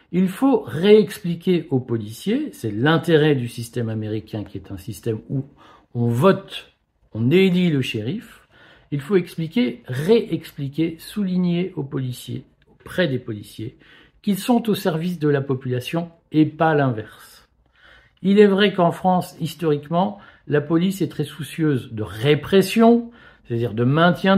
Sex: male